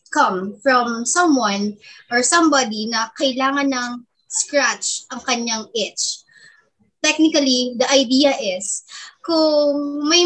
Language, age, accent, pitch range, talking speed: Filipino, 20-39, native, 225-285 Hz, 105 wpm